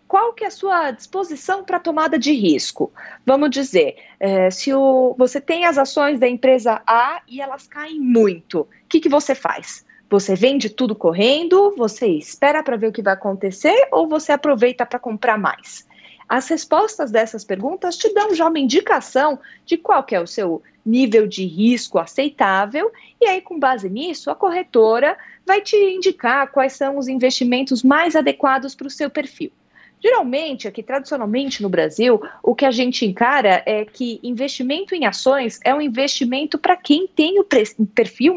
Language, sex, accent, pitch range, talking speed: Portuguese, female, Brazilian, 230-320 Hz, 170 wpm